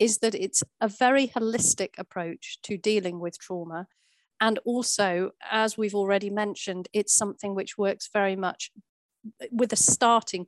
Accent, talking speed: British, 150 wpm